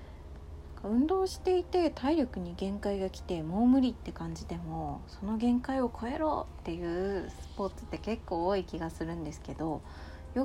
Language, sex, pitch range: Japanese, female, 150-240 Hz